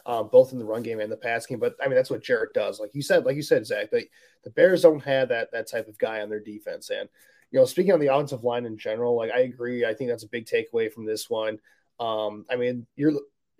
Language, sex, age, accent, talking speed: English, male, 20-39, American, 285 wpm